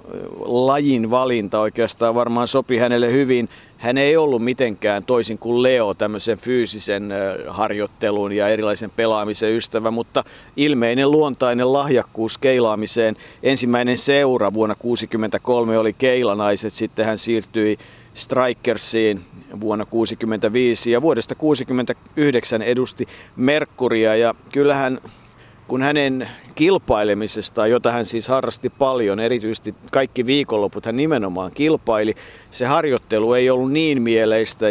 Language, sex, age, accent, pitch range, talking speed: Finnish, male, 50-69, native, 110-130 Hz, 110 wpm